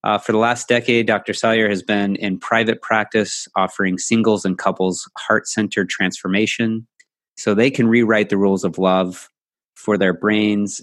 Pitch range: 100-125 Hz